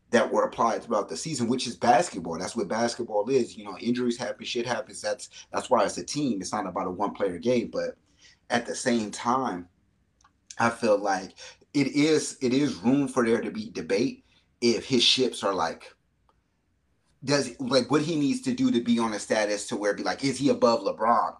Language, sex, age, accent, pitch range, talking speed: English, male, 30-49, American, 120-145 Hz, 210 wpm